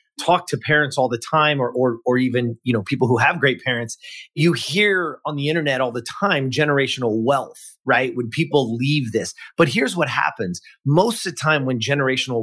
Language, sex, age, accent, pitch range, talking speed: English, male, 30-49, American, 125-160 Hz, 205 wpm